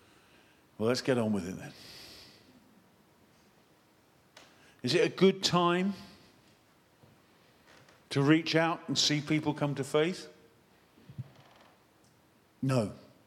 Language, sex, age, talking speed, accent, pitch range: English, male, 50-69, 100 wpm, British, 120-160 Hz